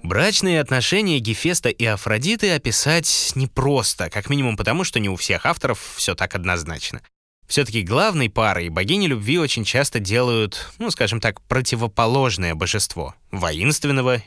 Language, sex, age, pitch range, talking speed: Russian, male, 20-39, 85-130 Hz, 140 wpm